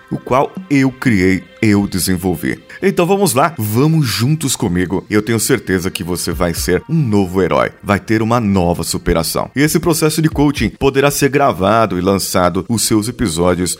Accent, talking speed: Brazilian, 175 wpm